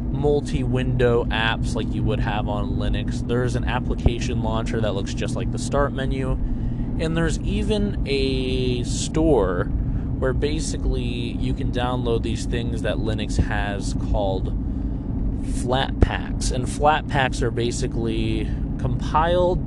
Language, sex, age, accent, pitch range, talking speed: English, male, 20-39, American, 95-130 Hz, 125 wpm